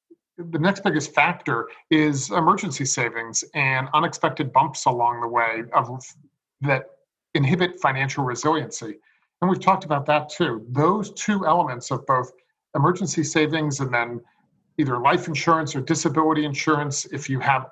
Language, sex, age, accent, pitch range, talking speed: English, male, 40-59, American, 125-155 Hz, 140 wpm